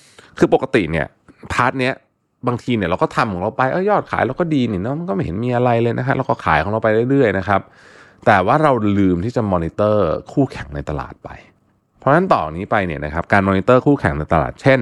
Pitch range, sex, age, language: 85-120 Hz, male, 20-39, Thai